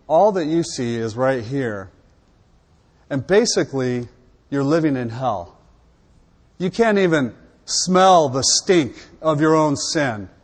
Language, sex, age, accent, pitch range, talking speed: English, male, 40-59, American, 115-150 Hz, 130 wpm